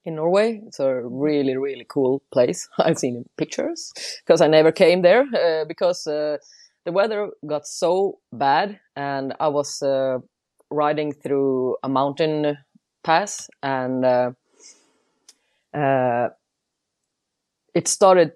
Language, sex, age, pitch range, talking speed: English, female, 30-49, 140-190 Hz, 125 wpm